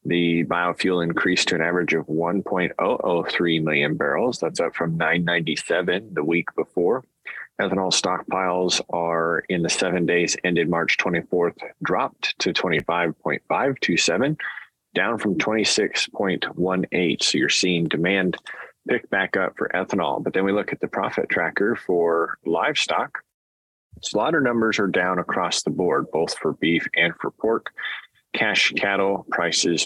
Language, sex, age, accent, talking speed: English, male, 30-49, American, 135 wpm